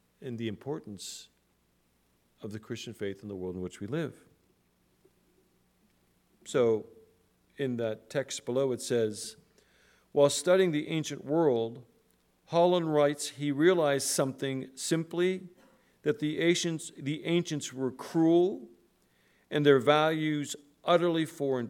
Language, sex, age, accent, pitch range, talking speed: English, male, 50-69, American, 105-160 Hz, 120 wpm